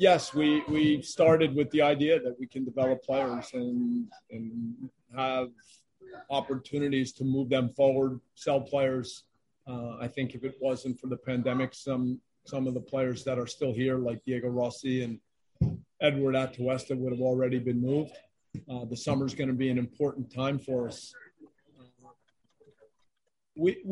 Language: English